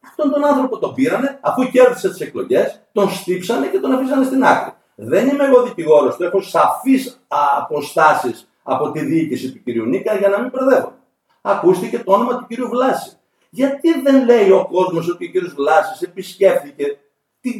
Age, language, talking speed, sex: 50-69, Greek, 175 wpm, male